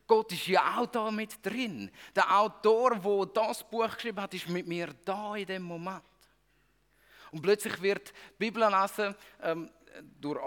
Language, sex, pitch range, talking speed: German, male, 160-215 Hz, 165 wpm